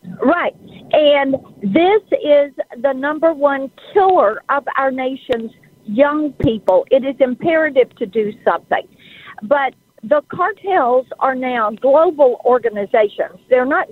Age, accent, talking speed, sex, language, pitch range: 50-69, American, 120 wpm, female, English, 220-295 Hz